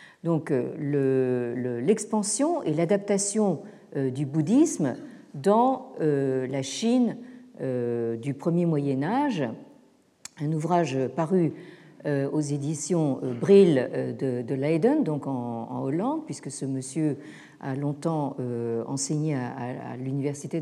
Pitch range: 140-215 Hz